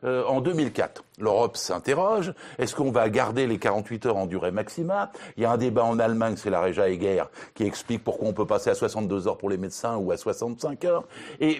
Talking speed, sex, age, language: 225 wpm, male, 60-79, French